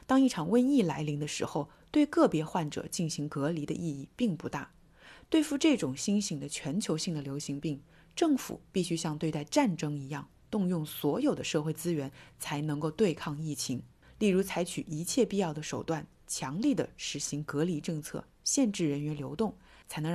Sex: female